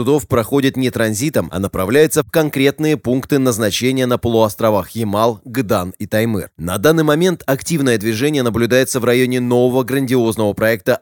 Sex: male